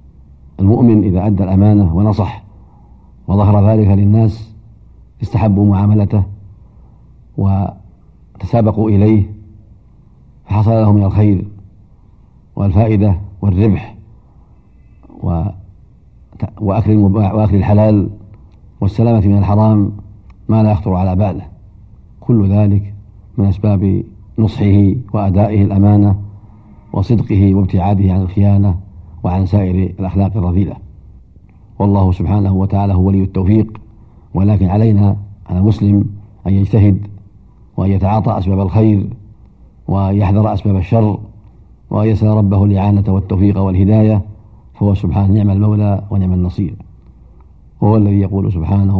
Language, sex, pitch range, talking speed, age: Arabic, male, 95-105 Hz, 95 wpm, 50-69